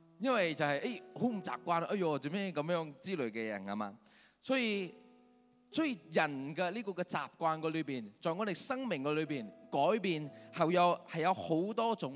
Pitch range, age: 140-210 Hz, 20-39